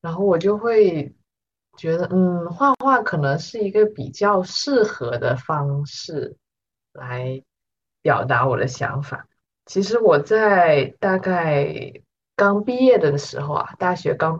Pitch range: 145-210 Hz